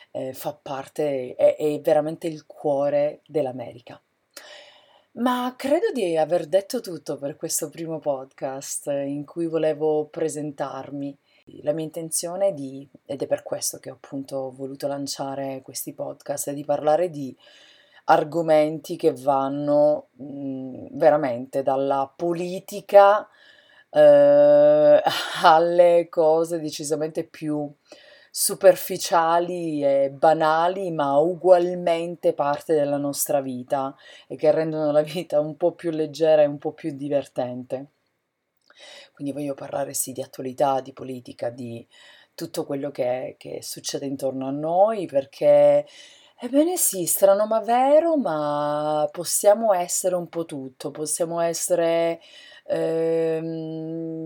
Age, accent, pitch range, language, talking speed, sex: 30-49, native, 145-180 Hz, Italian, 120 wpm, female